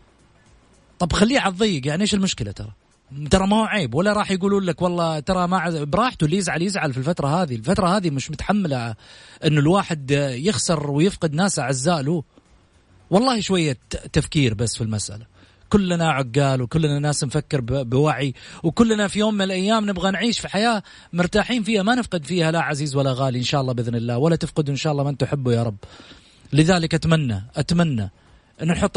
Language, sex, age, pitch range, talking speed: Arabic, male, 30-49, 130-175 Hz, 175 wpm